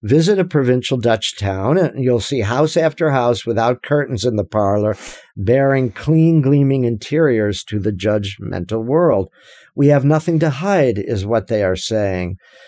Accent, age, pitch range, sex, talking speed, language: American, 50-69, 105-135 Hz, male, 160 wpm, English